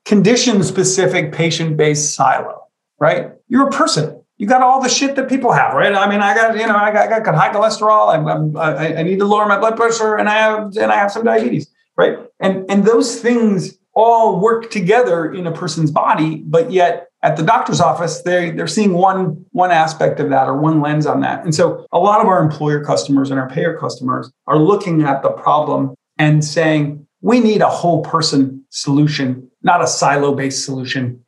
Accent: American